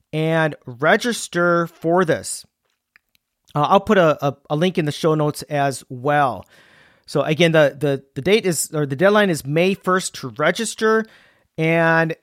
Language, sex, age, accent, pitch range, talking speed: English, male, 40-59, American, 145-180 Hz, 160 wpm